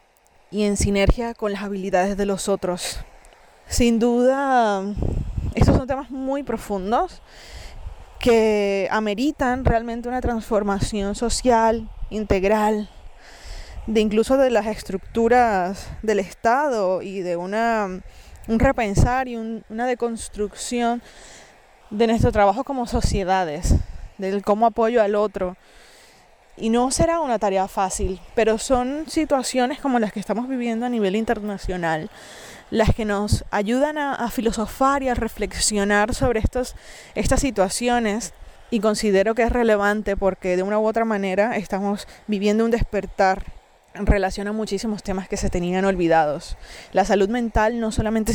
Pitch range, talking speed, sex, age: 200-235 Hz, 130 wpm, female, 20-39